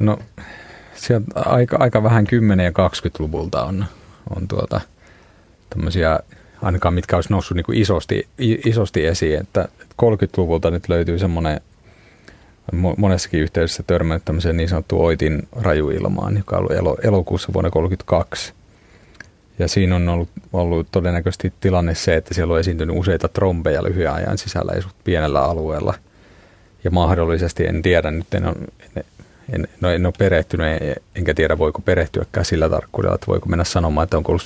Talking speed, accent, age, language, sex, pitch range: 140 wpm, native, 30-49, Finnish, male, 85-100 Hz